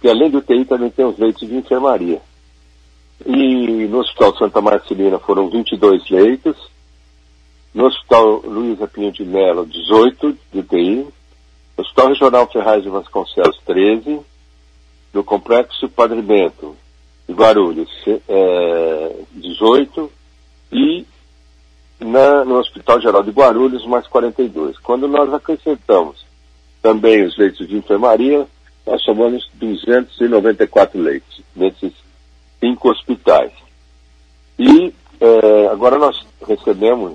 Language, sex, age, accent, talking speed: Portuguese, male, 60-79, Brazilian, 105 wpm